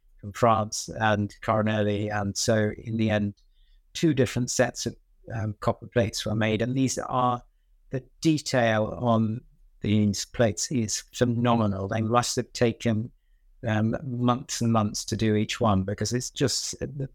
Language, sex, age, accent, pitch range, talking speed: English, male, 60-79, British, 105-120 Hz, 155 wpm